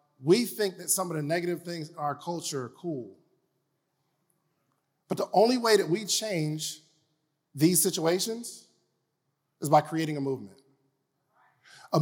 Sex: male